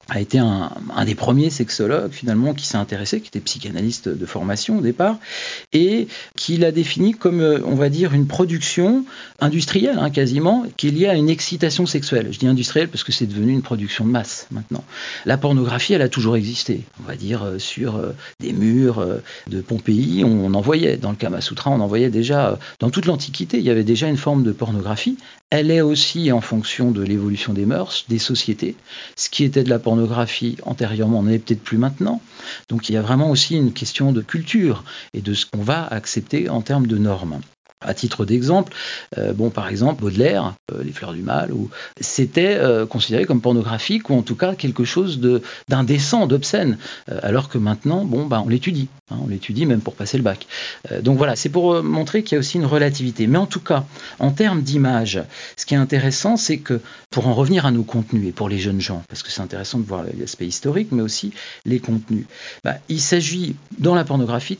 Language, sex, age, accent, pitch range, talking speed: French, male, 40-59, French, 115-155 Hz, 215 wpm